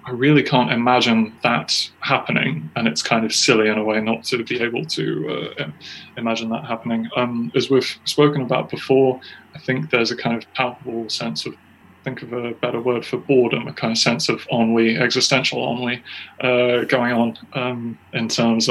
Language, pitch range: English, 110-125 Hz